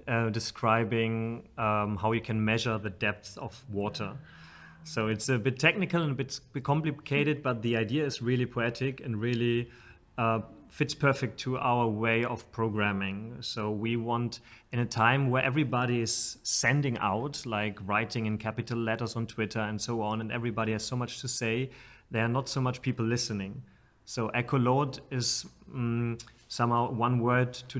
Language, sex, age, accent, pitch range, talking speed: English, male, 30-49, German, 110-125 Hz, 170 wpm